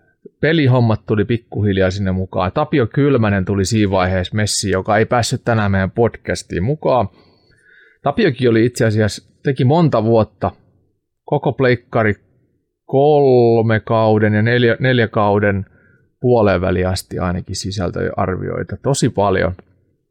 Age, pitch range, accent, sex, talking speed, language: 30-49, 95-120 Hz, native, male, 120 wpm, Finnish